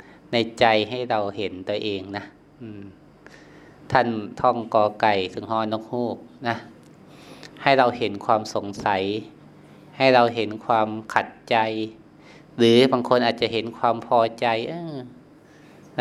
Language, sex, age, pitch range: Thai, male, 20-39, 110-120 Hz